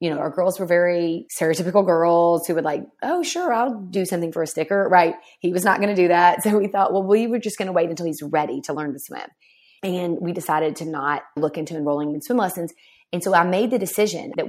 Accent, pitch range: American, 155-195 Hz